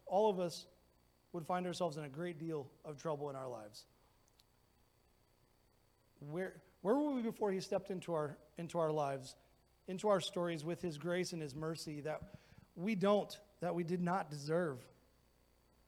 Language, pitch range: English, 130-190 Hz